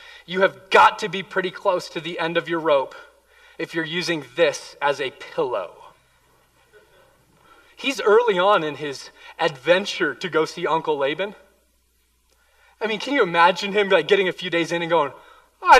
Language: English